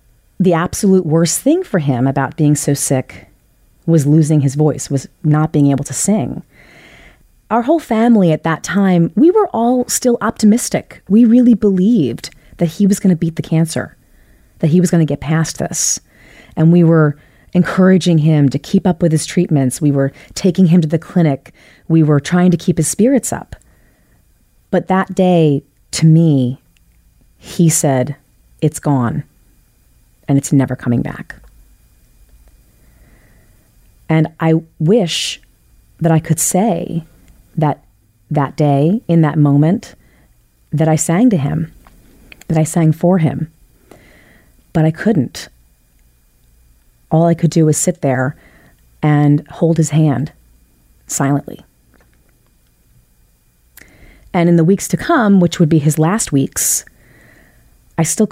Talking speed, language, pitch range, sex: 145 wpm, English, 135-180 Hz, female